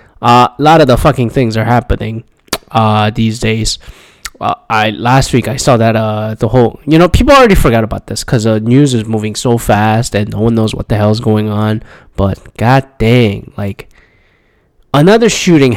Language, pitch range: English, 110-125 Hz